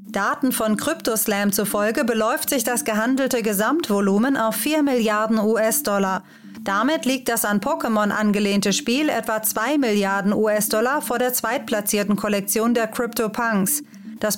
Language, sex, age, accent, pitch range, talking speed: German, female, 30-49, German, 210-260 Hz, 130 wpm